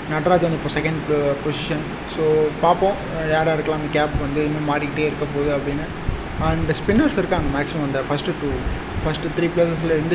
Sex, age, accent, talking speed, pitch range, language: male, 20-39, native, 165 wpm, 150-170 Hz, Tamil